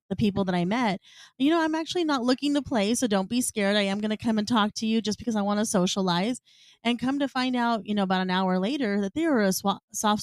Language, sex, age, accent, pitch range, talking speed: English, female, 20-39, American, 200-260 Hz, 275 wpm